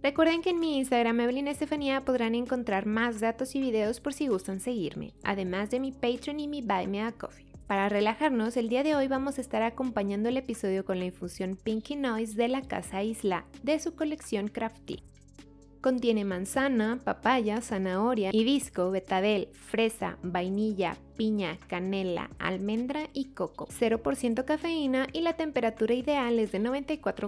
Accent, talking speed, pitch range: Mexican, 165 wpm, 195-270 Hz